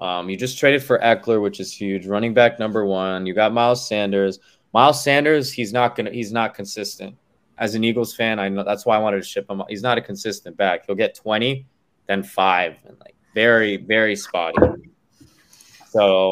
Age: 20-39